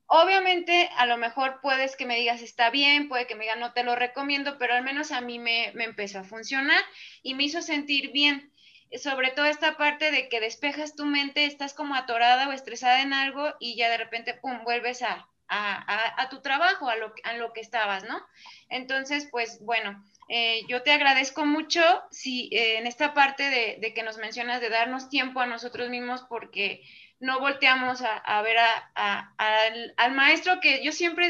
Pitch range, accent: 235-295 Hz, Mexican